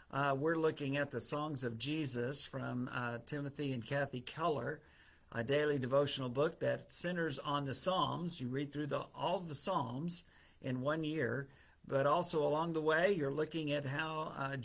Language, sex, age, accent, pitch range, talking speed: English, male, 50-69, American, 130-155 Hz, 170 wpm